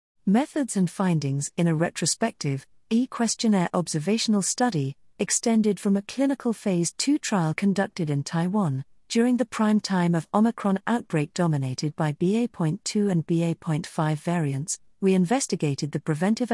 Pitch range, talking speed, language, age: 155-205 Hz, 130 wpm, English, 50-69